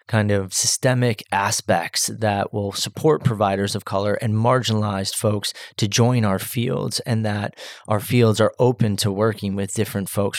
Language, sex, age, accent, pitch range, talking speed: English, male, 30-49, American, 105-120 Hz, 160 wpm